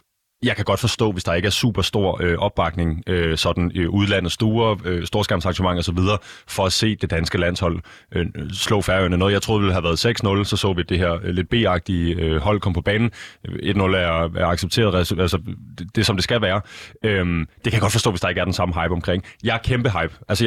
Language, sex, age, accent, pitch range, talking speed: Danish, male, 30-49, native, 90-110 Hz, 235 wpm